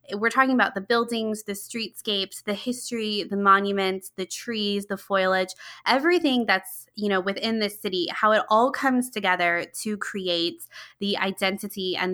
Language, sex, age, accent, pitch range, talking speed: English, female, 20-39, American, 185-230 Hz, 160 wpm